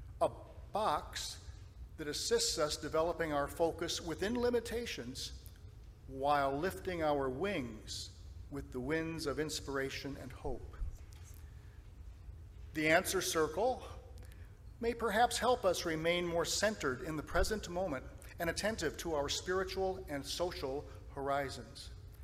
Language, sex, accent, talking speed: English, male, American, 115 wpm